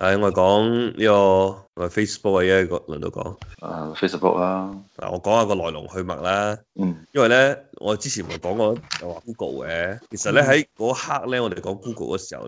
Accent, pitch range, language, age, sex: native, 90-110 Hz, Chinese, 20-39, male